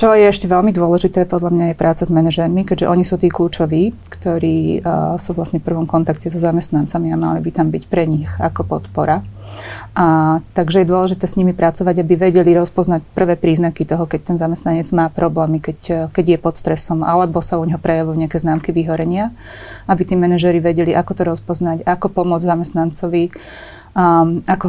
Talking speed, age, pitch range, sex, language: 185 wpm, 30-49, 165-185 Hz, female, Slovak